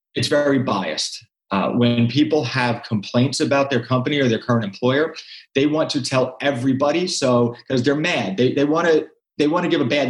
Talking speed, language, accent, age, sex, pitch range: 190 wpm, English, American, 30-49, male, 120-155 Hz